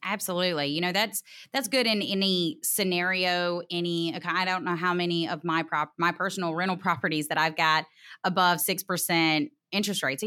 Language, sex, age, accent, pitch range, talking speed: English, female, 30-49, American, 165-200 Hz, 175 wpm